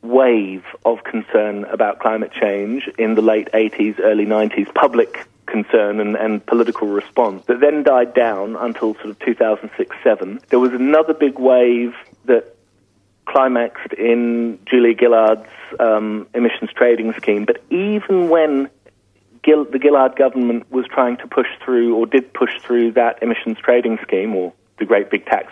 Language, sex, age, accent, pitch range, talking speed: English, male, 40-59, British, 110-130 Hz, 165 wpm